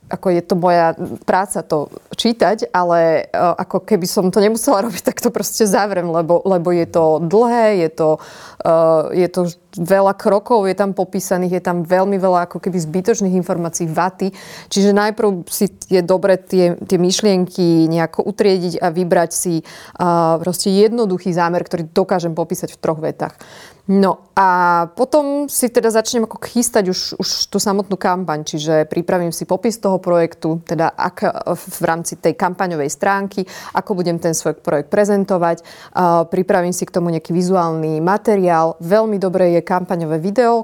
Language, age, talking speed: Slovak, 20-39, 155 wpm